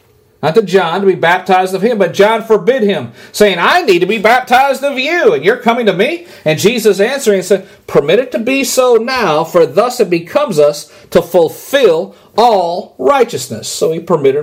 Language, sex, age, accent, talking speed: English, male, 40-59, American, 195 wpm